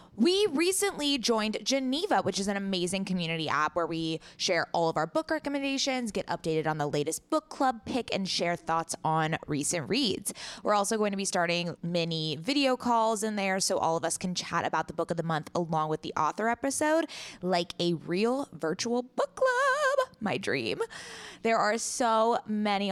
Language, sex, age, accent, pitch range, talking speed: English, female, 20-39, American, 165-240 Hz, 190 wpm